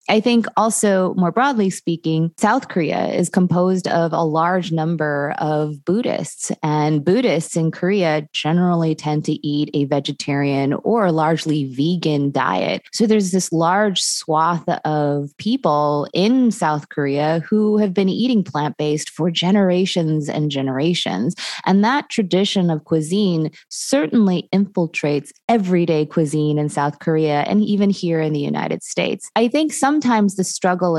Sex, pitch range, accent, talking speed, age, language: female, 150-190 Hz, American, 145 wpm, 20-39, English